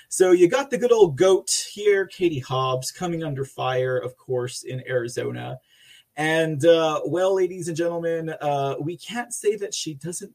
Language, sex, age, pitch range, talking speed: English, male, 30-49, 130-175 Hz, 175 wpm